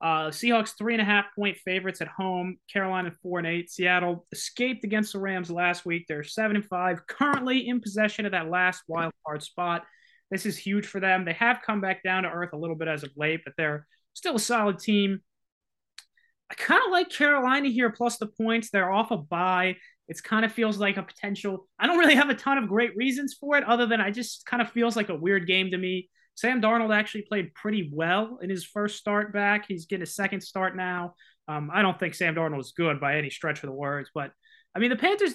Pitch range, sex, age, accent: 170-225 Hz, male, 20-39, American